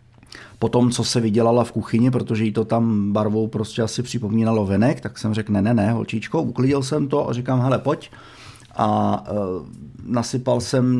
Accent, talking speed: native, 185 wpm